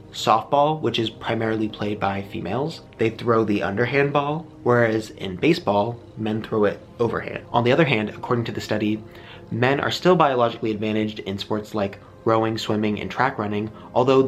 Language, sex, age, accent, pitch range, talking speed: English, male, 30-49, American, 105-125 Hz, 170 wpm